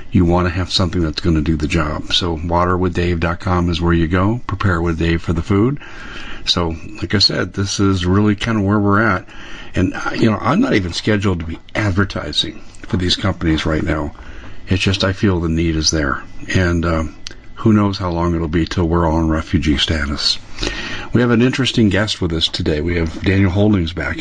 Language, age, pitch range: English, 50-69, 85-105 Hz